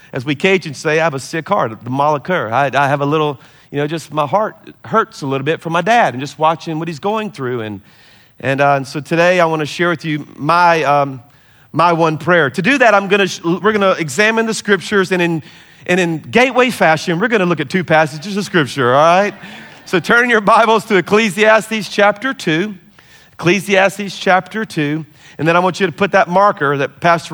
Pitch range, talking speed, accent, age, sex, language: 140-190 Hz, 225 wpm, American, 40-59, male, English